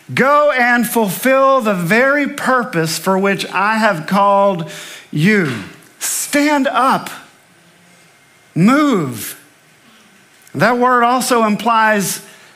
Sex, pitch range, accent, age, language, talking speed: male, 170-215 Hz, American, 50-69, English, 90 wpm